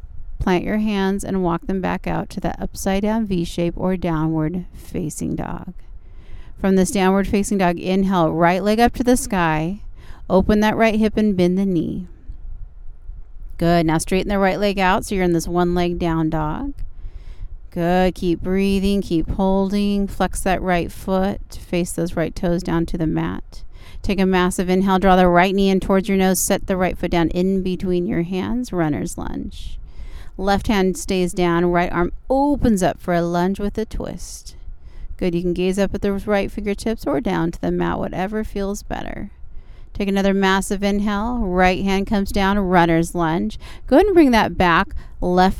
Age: 30-49